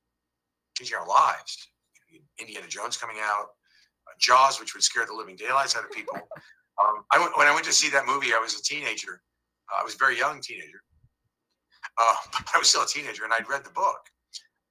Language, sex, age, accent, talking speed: English, male, 50-69, American, 210 wpm